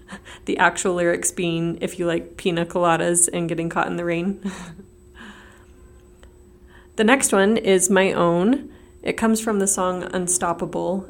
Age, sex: 30-49, female